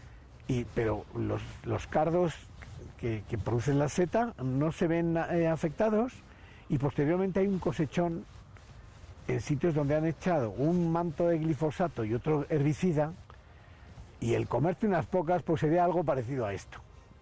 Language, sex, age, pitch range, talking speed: Spanish, male, 50-69, 115-160 Hz, 145 wpm